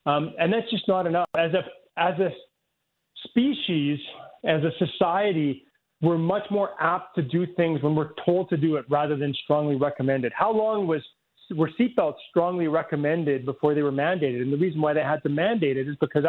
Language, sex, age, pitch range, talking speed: English, male, 40-59, 145-185 Hz, 195 wpm